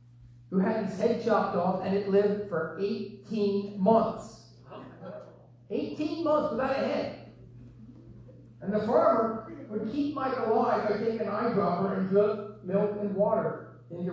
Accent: American